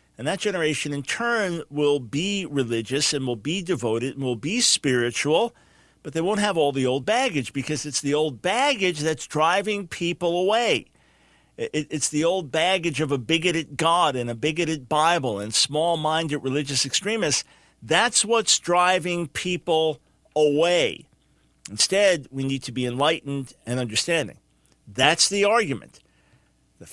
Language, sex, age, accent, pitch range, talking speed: English, male, 50-69, American, 130-170 Hz, 150 wpm